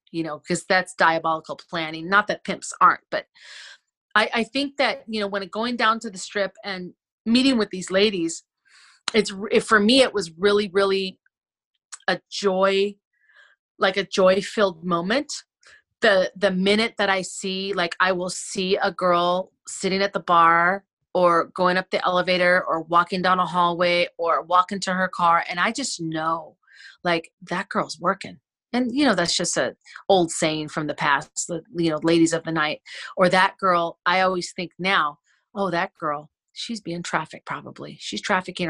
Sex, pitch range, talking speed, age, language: female, 165-200 Hz, 180 wpm, 30-49, English